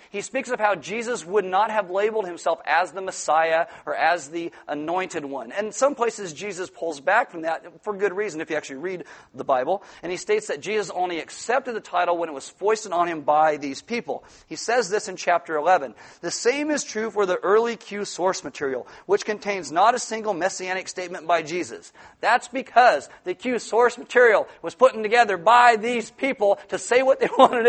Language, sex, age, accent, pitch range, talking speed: English, male, 40-59, American, 180-250 Hz, 205 wpm